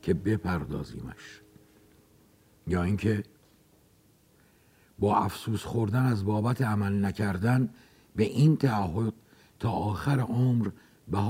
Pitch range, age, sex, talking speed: 100-125 Hz, 60-79, male, 95 wpm